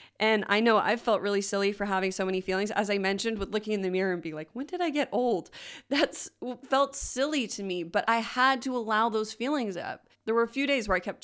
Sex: female